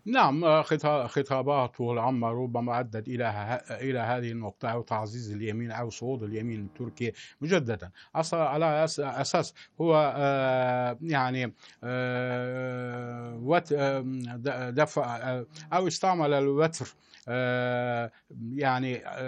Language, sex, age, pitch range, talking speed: Arabic, male, 60-79, 120-150 Hz, 90 wpm